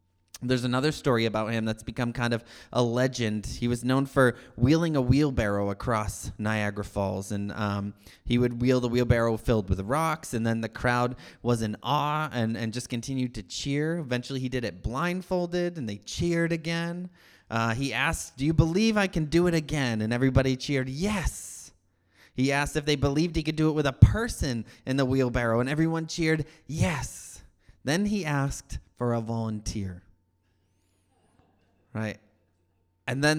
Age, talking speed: 20-39, 175 wpm